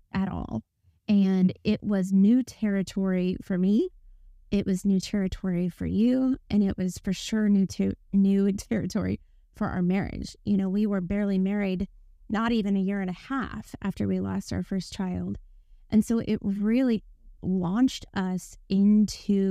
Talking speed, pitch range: 165 wpm, 185-215 Hz